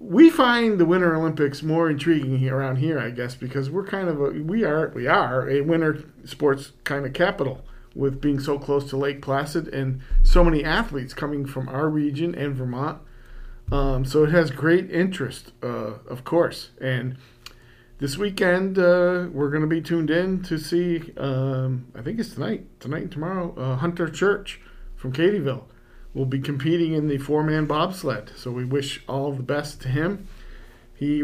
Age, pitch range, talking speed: 50-69, 135-170 Hz, 180 wpm